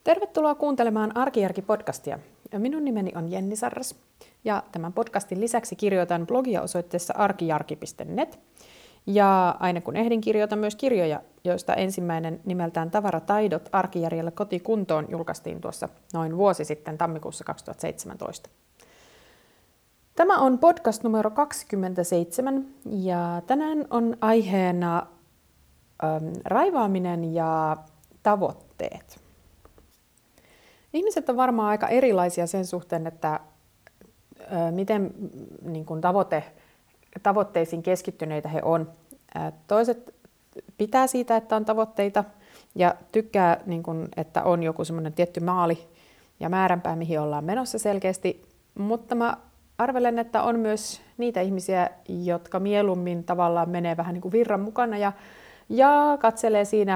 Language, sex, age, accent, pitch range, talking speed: Finnish, female, 30-49, native, 170-220 Hz, 115 wpm